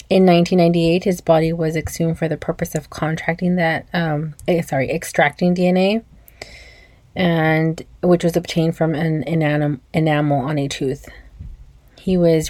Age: 30-49